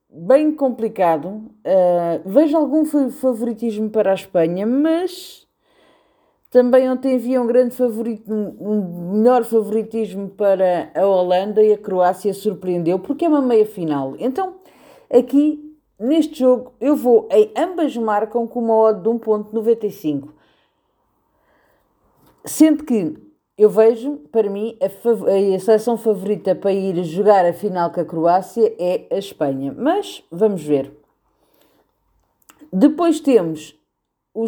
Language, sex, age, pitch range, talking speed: Portuguese, female, 40-59, 180-245 Hz, 125 wpm